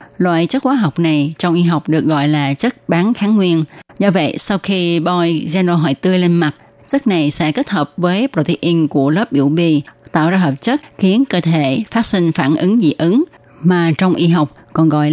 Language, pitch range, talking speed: Vietnamese, 155-195 Hz, 220 wpm